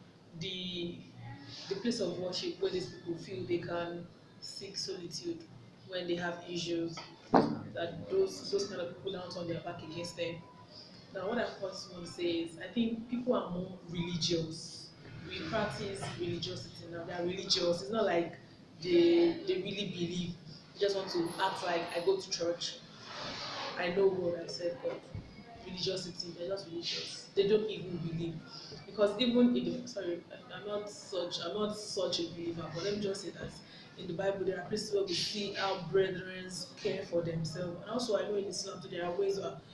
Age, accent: 20-39, Nigerian